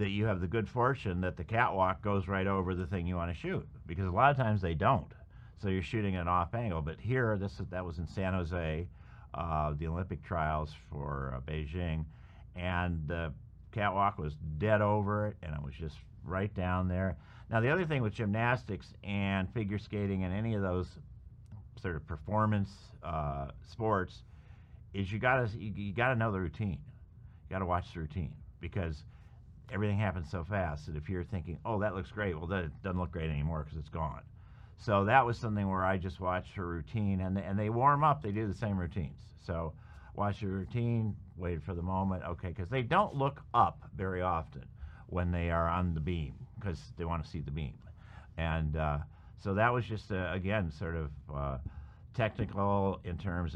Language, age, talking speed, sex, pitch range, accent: English, 50-69, 200 wpm, male, 85-105 Hz, American